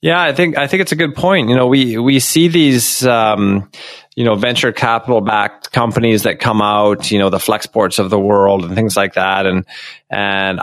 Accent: American